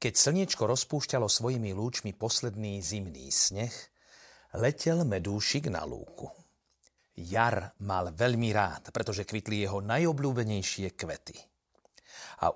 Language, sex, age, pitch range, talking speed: Slovak, male, 40-59, 105-140 Hz, 105 wpm